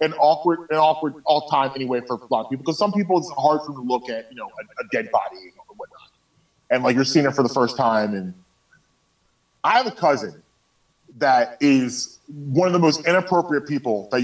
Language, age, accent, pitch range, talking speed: English, 30-49, American, 140-195 Hz, 215 wpm